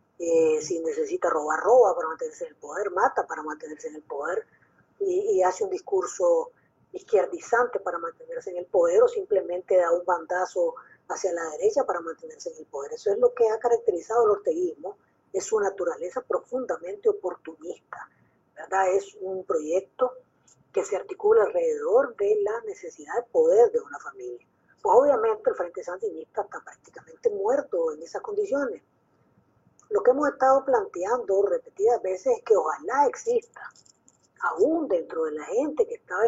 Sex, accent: female, American